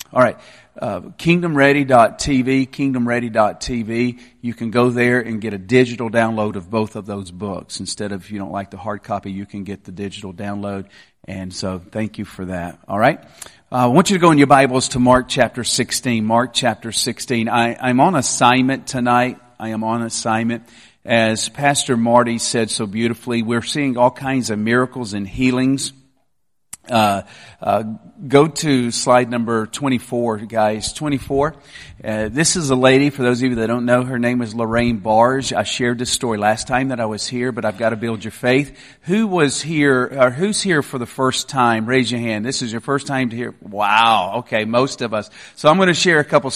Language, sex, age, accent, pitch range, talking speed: English, male, 40-59, American, 115-135 Hz, 200 wpm